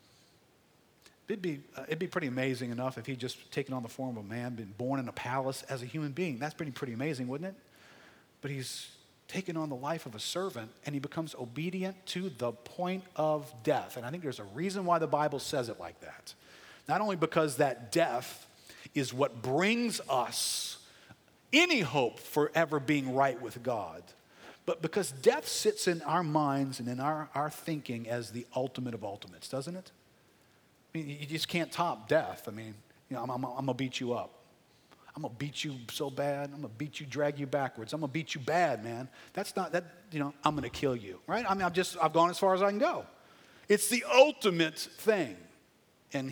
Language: English